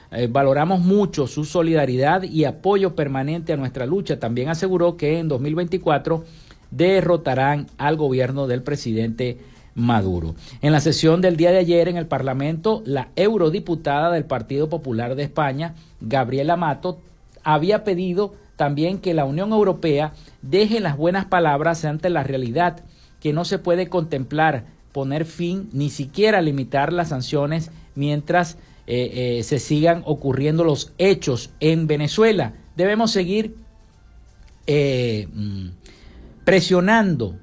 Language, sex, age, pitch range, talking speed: Spanish, male, 50-69, 135-175 Hz, 130 wpm